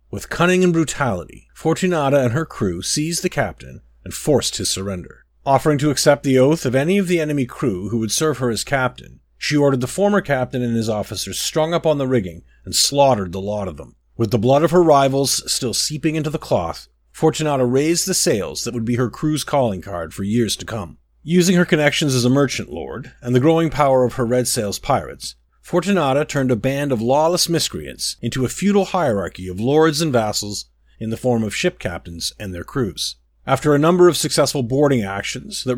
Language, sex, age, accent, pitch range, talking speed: English, male, 40-59, American, 105-155 Hz, 210 wpm